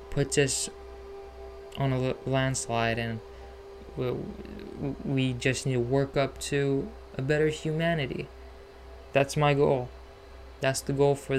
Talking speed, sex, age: 125 wpm, male, 20-39